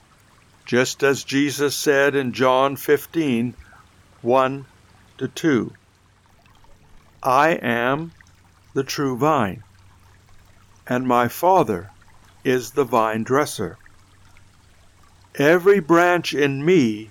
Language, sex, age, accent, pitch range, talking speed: English, male, 60-79, American, 95-135 Hz, 85 wpm